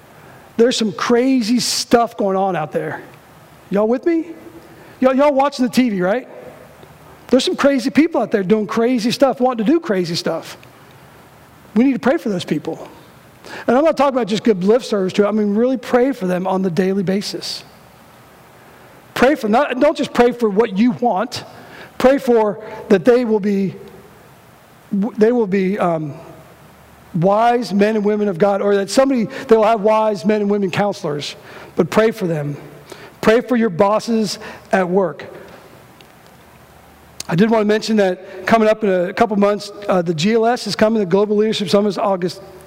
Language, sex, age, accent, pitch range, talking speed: English, male, 40-59, American, 195-235 Hz, 180 wpm